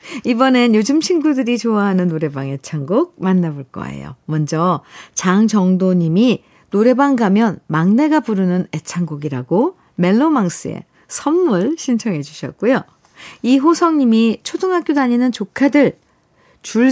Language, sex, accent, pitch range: Korean, female, native, 180-275 Hz